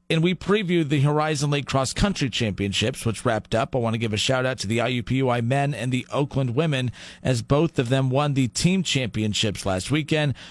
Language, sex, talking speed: English, male, 210 wpm